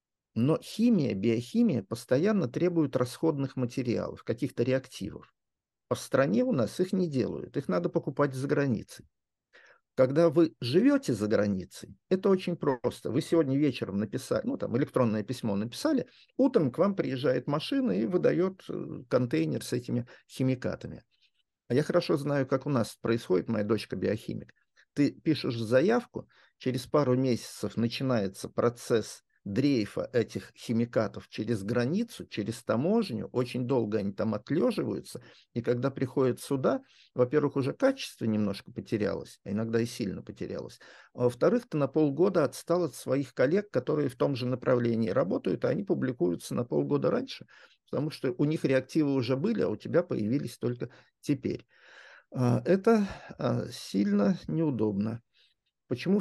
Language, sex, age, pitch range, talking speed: Russian, male, 50-69, 115-165 Hz, 140 wpm